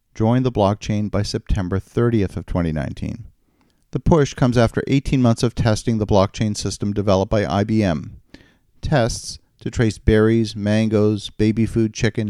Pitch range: 100-120 Hz